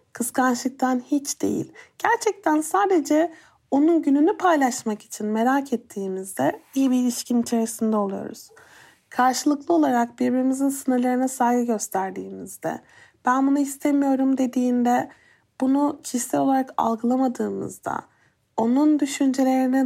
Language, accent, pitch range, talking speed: Turkish, native, 235-290 Hz, 95 wpm